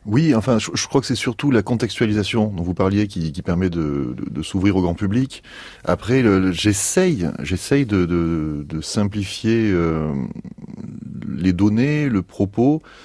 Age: 30-49